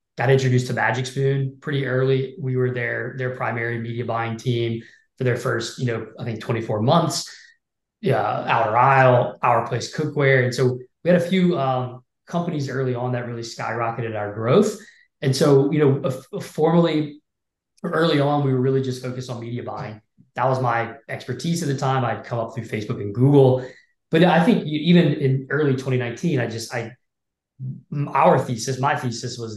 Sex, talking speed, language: male, 185 wpm, English